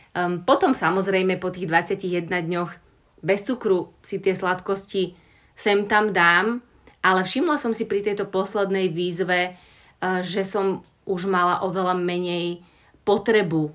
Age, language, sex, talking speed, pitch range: 30-49, Slovak, female, 125 wpm, 180-200 Hz